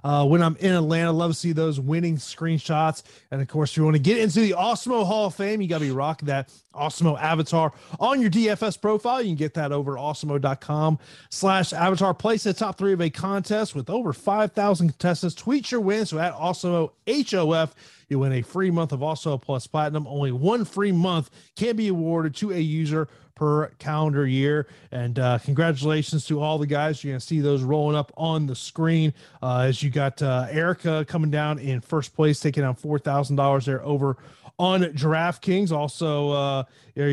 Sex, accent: male, American